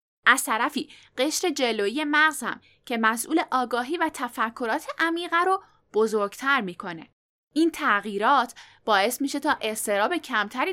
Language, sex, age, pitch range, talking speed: Persian, female, 10-29, 220-320 Hz, 115 wpm